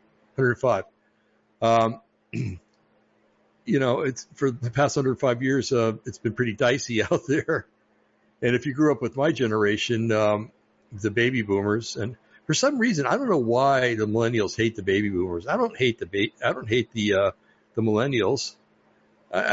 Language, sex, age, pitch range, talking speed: English, male, 60-79, 105-130 Hz, 170 wpm